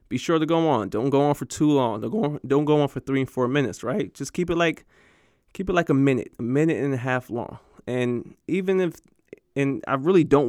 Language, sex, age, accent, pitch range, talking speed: English, male, 20-39, American, 125-155 Hz, 240 wpm